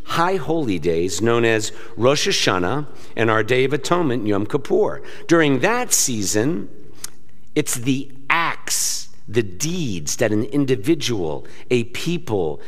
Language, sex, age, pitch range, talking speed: English, male, 50-69, 130-170 Hz, 130 wpm